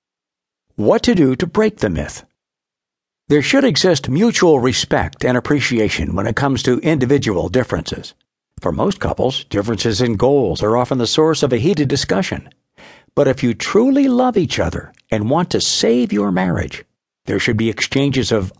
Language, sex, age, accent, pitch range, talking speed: English, male, 60-79, American, 110-155 Hz, 170 wpm